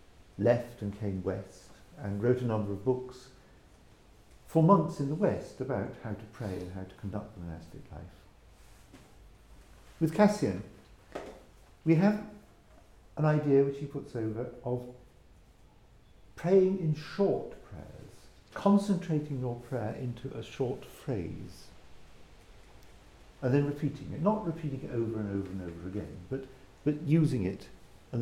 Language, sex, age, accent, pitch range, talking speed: English, male, 60-79, British, 100-145 Hz, 140 wpm